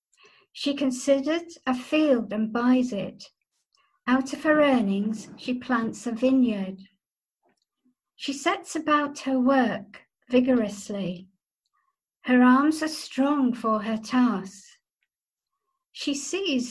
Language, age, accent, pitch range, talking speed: English, 50-69, British, 225-285 Hz, 110 wpm